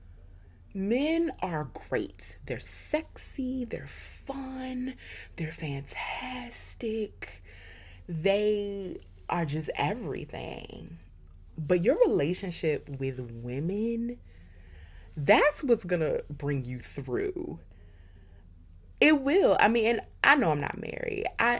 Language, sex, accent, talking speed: English, female, American, 95 wpm